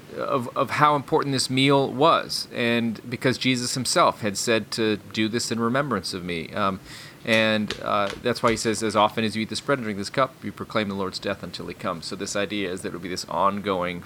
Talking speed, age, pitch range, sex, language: 240 wpm, 30-49, 105-130 Hz, male, English